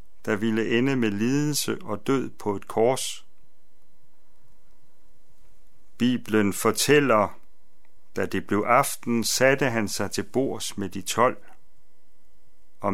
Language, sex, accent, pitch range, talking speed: Danish, male, native, 110-145 Hz, 115 wpm